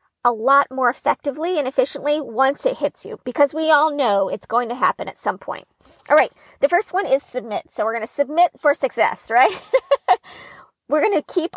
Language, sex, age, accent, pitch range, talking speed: English, female, 40-59, American, 230-295 Hz, 205 wpm